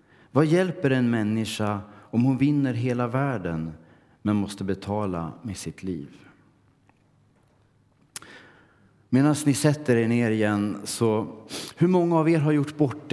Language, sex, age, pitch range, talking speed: Swedish, male, 40-59, 100-140 Hz, 135 wpm